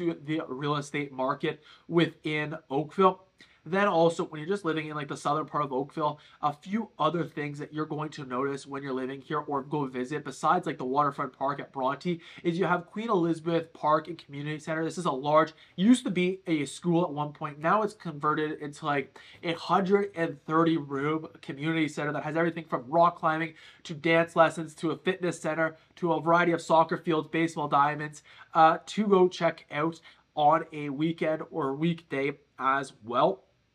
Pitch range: 150-170 Hz